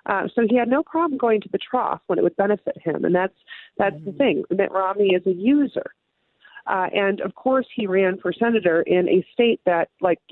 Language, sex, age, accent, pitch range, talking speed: English, female, 40-59, American, 170-230 Hz, 220 wpm